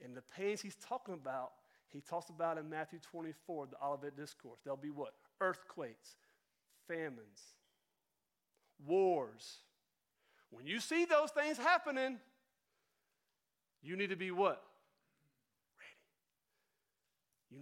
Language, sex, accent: English, male, American